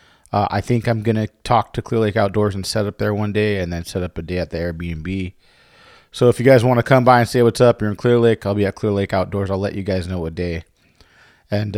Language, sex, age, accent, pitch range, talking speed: English, male, 30-49, American, 100-120 Hz, 285 wpm